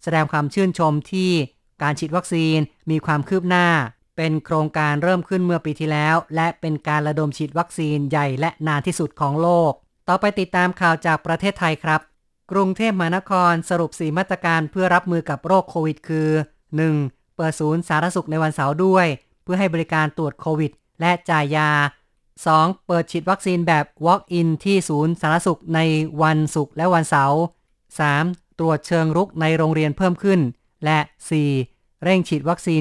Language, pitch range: Thai, 150-175 Hz